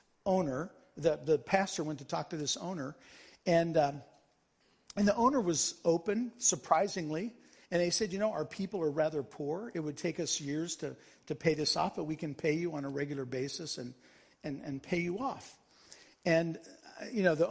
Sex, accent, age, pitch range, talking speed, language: male, American, 50-69, 155-205 Hz, 200 wpm, English